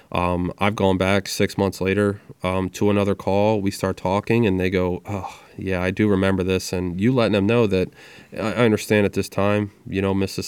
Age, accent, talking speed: 20-39, American, 210 wpm